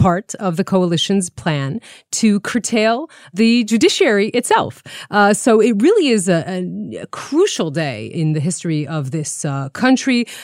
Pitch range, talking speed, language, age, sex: 155-200 Hz, 155 wpm, English, 30-49, female